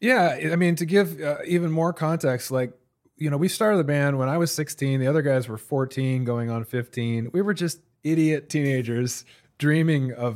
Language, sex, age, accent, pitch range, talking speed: English, male, 30-49, American, 120-145 Hz, 205 wpm